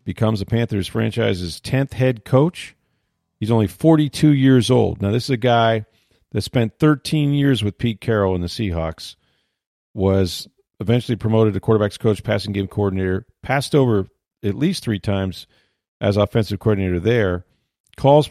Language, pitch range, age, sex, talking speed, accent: English, 100-130 Hz, 40-59, male, 155 wpm, American